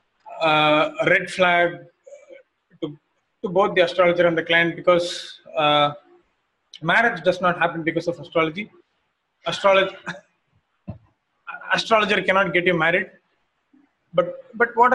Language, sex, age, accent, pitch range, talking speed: English, male, 30-49, Indian, 165-195 Hz, 120 wpm